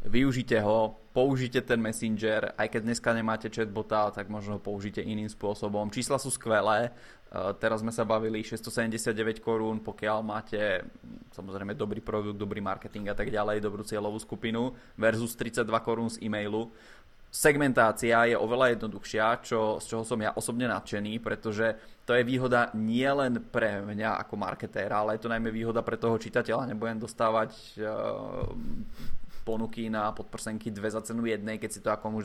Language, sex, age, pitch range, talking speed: Czech, male, 20-39, 110-120 Hz, 165 wpm